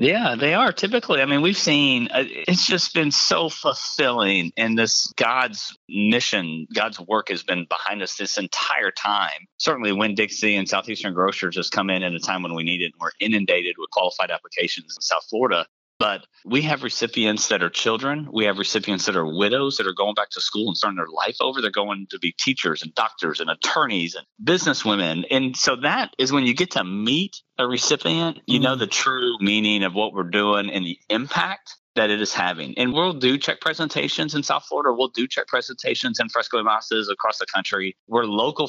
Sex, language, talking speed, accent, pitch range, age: male, English, 205 wpm, American, 100-135 Hz, 40-59